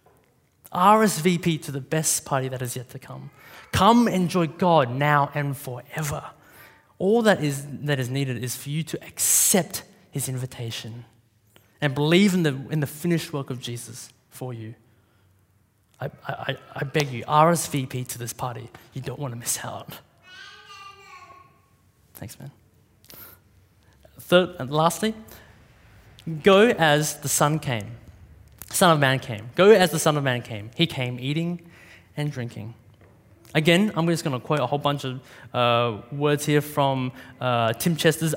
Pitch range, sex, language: 125-165 Hz, male, English